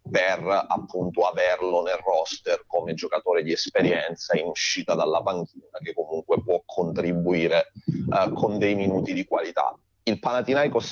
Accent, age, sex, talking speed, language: native, 30-49, male, 135 wpm, Italian